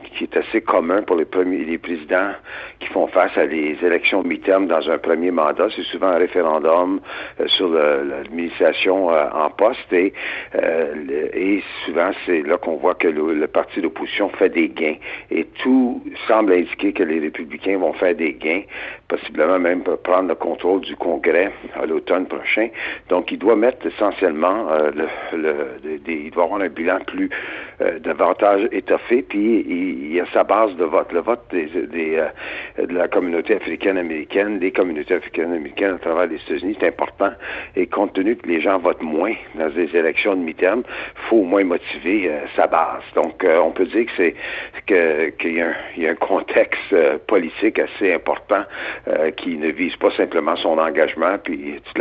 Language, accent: French, French